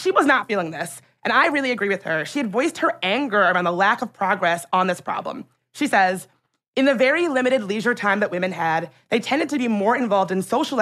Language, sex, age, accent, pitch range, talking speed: English, female, 20-39, American, 190-245 Hz, 240 wpm